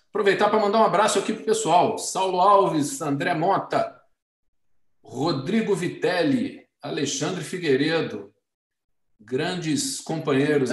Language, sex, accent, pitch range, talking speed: Portuguese, male, Brazilian, 135-180 Hz, 105 wpm